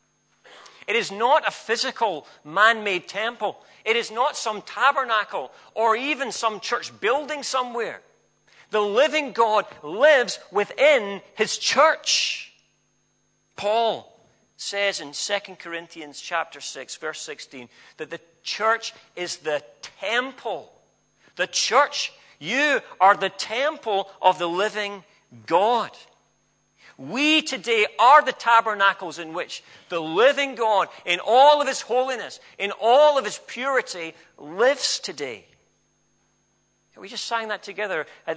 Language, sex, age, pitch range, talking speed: English, male, 40-59, 175-245 Hz, 120 wpm